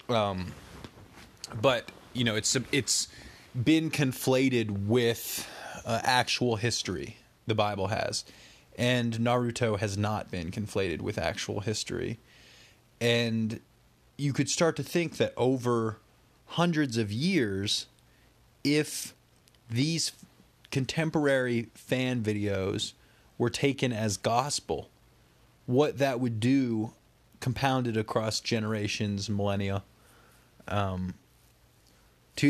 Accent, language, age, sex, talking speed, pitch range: American, English, 30-49, male, 100 wpm, 105-125 Hz